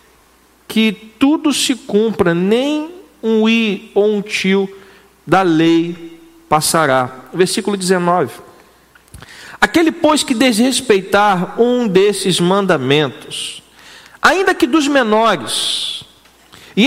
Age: 50-69